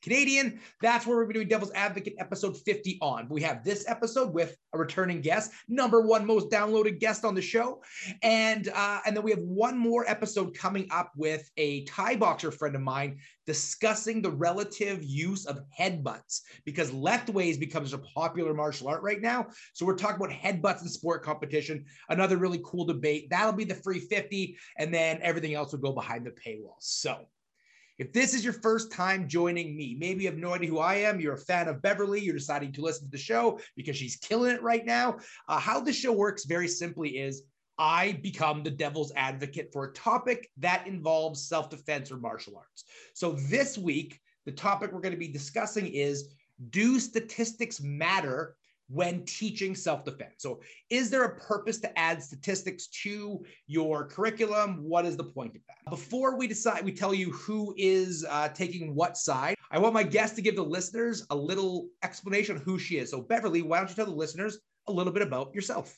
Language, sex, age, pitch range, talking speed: English, male, 30-49, 155-215 Hz, 200 wpm